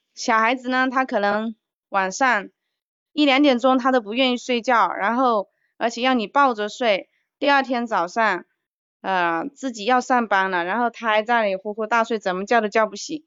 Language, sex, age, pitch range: Chinese, female, 20-39, 195-245 Hz